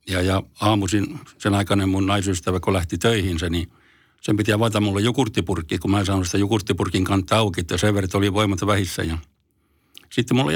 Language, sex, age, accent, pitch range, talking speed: Finnish, male, 60-79, native, 95-110 Hz, 175 wpm